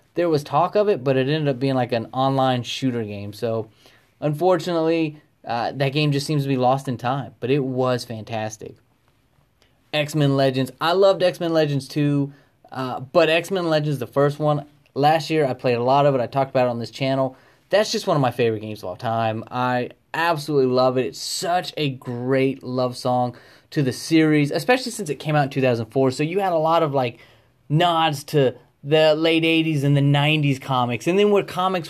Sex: male